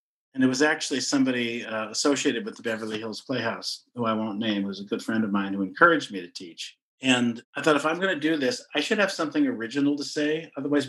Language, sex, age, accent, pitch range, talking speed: English, male, 50-69, American, 115-155 Hz, 250 wpm